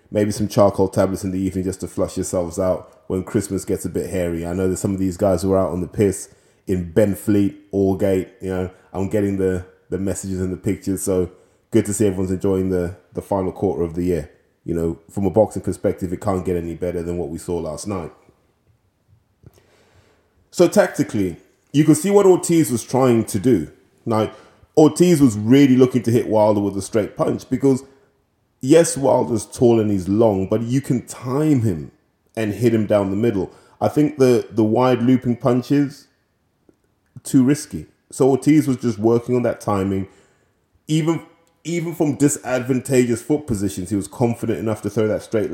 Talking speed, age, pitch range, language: 190 wpm, 20-39, 95-130 Hz, English